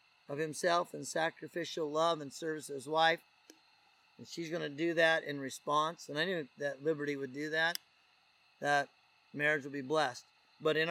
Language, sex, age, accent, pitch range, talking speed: English, male, 50-69, American, 145-185 Hz, 175 wpm